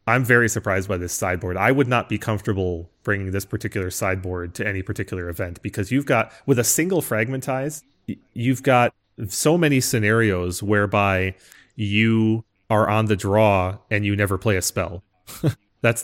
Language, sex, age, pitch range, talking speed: English, male, 30-49, 100-115 Hz, 165 wpm